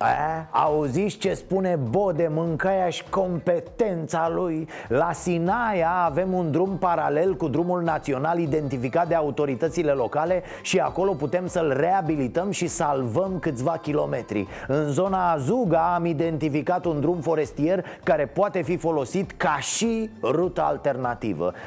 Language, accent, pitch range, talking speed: Romanian, native, 140-185 Hz, 125 wpm